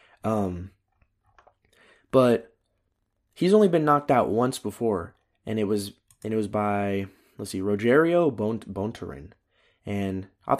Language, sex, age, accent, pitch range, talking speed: English, male, 20-39, American, 100-145 Hz, 125 wpm